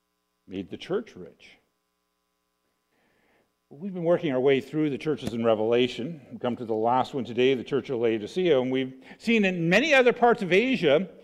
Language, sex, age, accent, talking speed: English, male, 50-69, American, 180 wpm